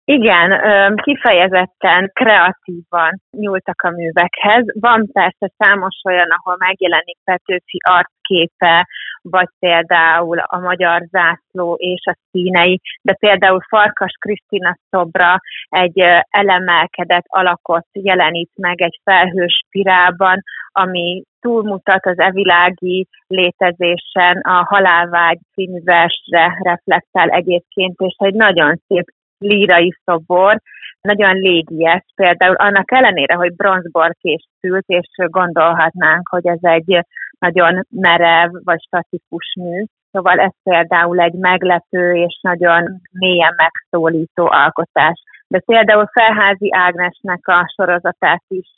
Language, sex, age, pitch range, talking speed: Hungarian, female, 30-49, 175-195 Hz, 105 wpm